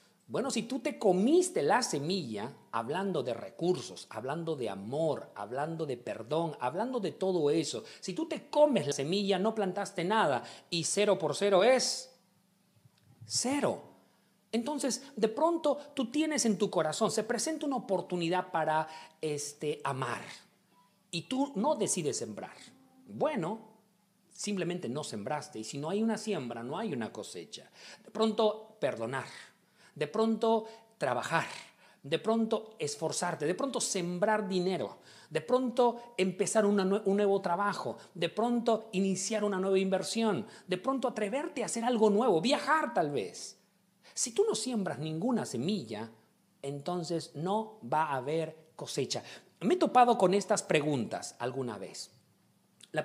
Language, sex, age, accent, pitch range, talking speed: Spanish, male, 40-59, Mexican, 170-225 Hz, 145 wpm